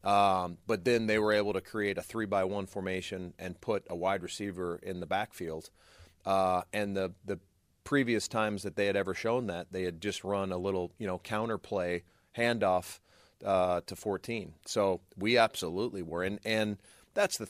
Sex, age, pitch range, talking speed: male, 40-59, 90-105 Hz, 190 wpm